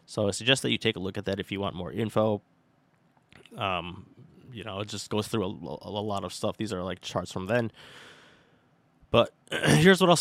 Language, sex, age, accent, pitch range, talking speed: English, male, 20-39, American, 95-115 Hz, 225 wpm